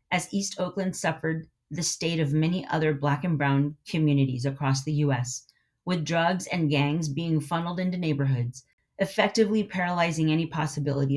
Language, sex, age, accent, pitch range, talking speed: English, female, 30-49, American, 145-190 Hz, 150 wpm